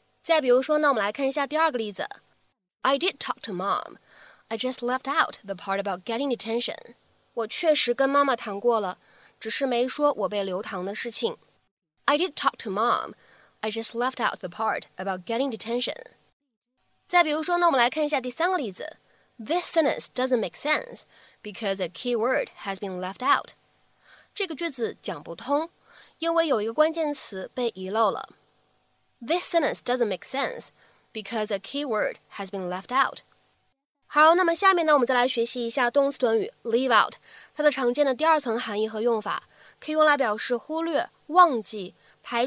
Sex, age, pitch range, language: female, 10-29, 215-290 Hz, Chinese